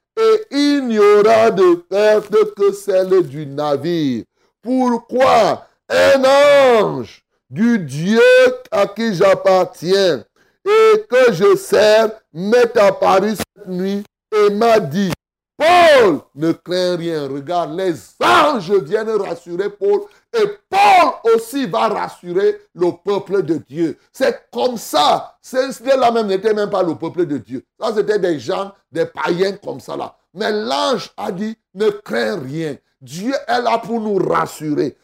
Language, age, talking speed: French, 60-79, 140 wpm